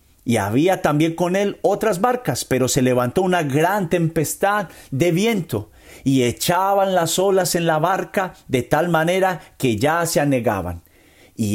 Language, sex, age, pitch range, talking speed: Spanish, male, 50-69, 135-185 Hz, 155 wpm